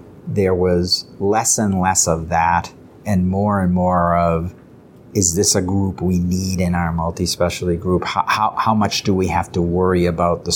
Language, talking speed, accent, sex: English, 190 wpm, American, male